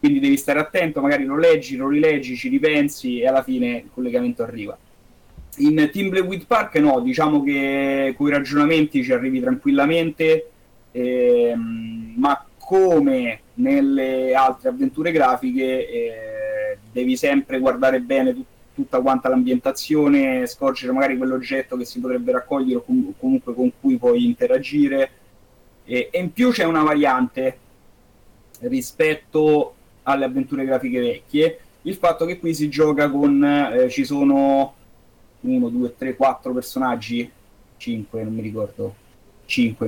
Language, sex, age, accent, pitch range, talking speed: Italian, male, 30-49, native, 125-200 Hz, 135 wpm